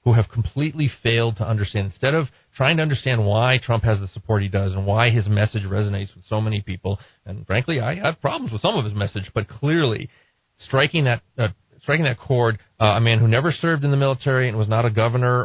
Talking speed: 230 wpm